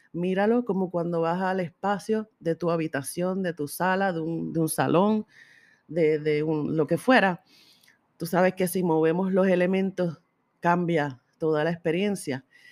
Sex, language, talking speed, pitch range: female, Spanish, 150 wpm, 160-205 Hz